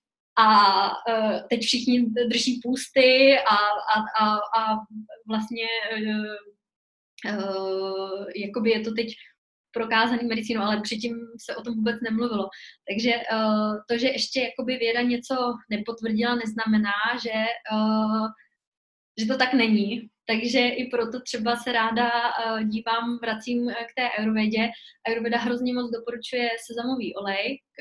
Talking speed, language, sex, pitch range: 110 wpm, Slovak, female, 210-240 Hz